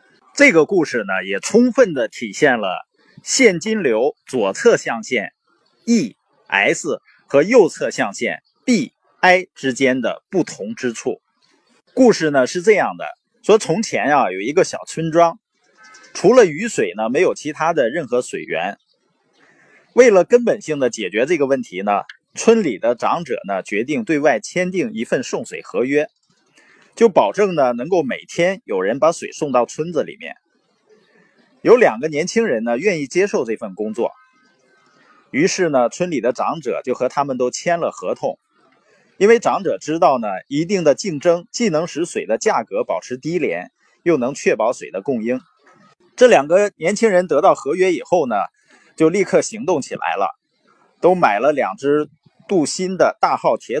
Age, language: 30-49, Chinese